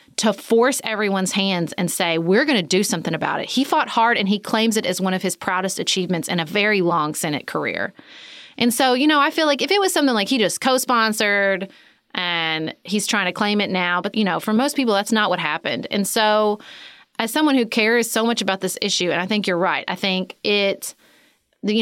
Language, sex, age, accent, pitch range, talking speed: English, female, 30-49, American, 185-235 Hz, 230 wpm